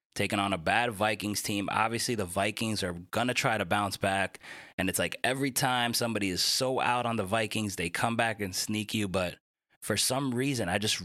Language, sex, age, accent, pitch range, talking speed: English, male, 20-39, American, 95-120 Hz, 215 wpm